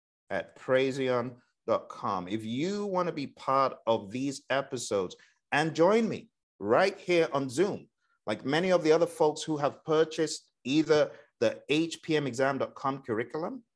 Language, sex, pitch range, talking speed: English, male, 115-155 Hz, 135 wpm